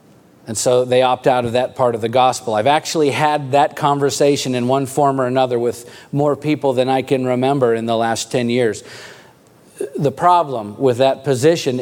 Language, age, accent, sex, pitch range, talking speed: English, 40-59, American, male, 125-155 Hz, 195 wpm